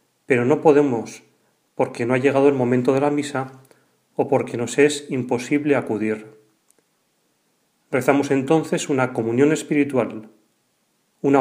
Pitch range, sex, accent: 125-150 Hz, male, Spanish